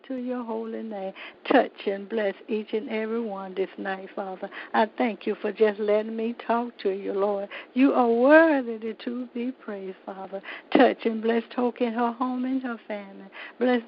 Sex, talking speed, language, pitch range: female, 185 wpm, English, 210-255 Hz